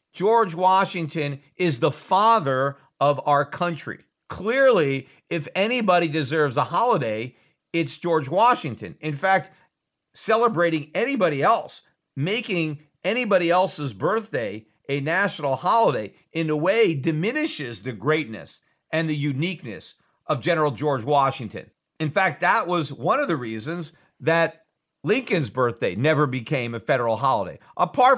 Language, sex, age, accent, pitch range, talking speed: English, male, 50-69, American, 140-190 Hz, 125 wpm